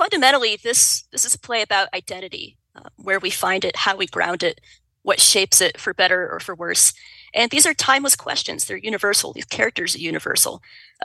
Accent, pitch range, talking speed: American, 185-225 Hz, 200 wpm